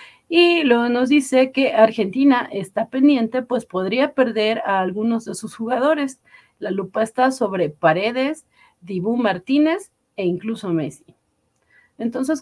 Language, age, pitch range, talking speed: Spanish, 40-59, 190-240 Hz, 130 wpm